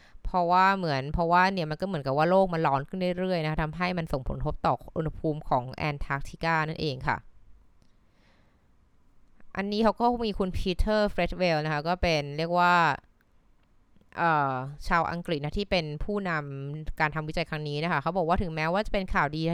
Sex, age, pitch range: female, 20-39, 145-185 Hz